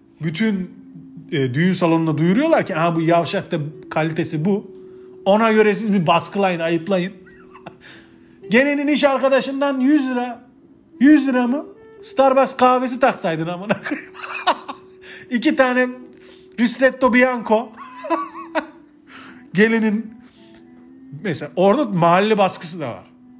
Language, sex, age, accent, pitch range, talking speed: Turkish, male, 40-59, native, 175-255 Hz, 110 wpm